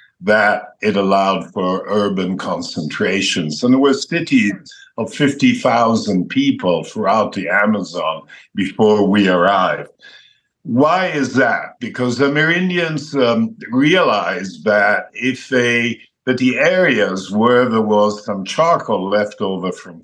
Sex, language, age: male, English, 60-79